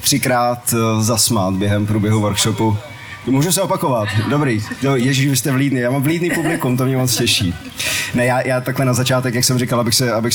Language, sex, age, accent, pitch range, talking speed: Czech, male, 30-49, native, 115-130 Hz, 190 wpm